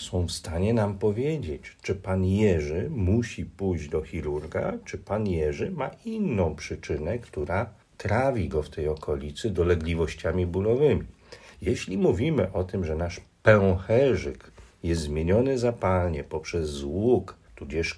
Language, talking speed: Polish, 130 wpm